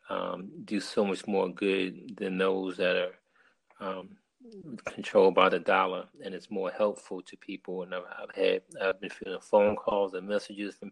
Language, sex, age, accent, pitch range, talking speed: English, male, 40-59, American, 95-105 Hz, 175 wpm